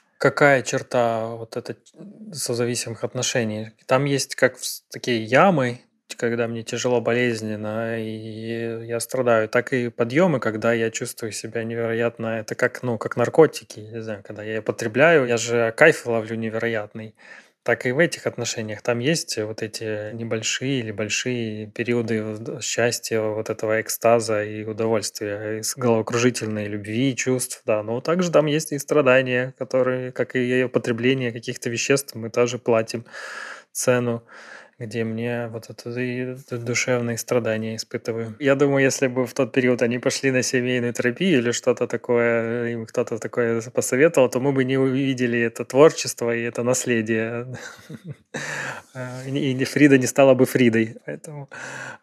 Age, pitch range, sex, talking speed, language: 20-39, 115-130 Hz, male, 145 wpm, Ukrainian